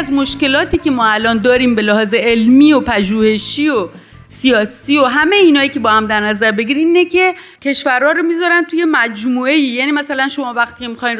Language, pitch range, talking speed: Persian, 220-300 Hz, 180 wpm